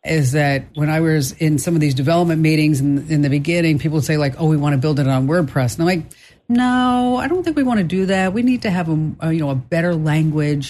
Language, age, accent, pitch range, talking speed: English, 50-69, American, 140-175 Hz, 280 wpm